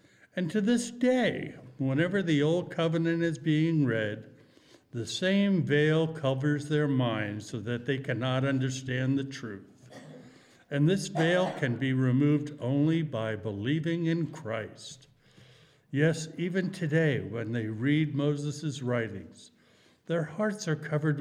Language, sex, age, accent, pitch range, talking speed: English, male, 60-79, American, 125-160 Hz, 135 wpm